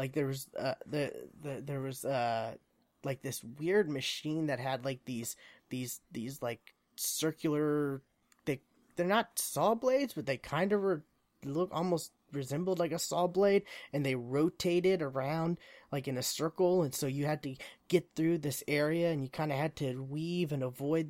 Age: 20-39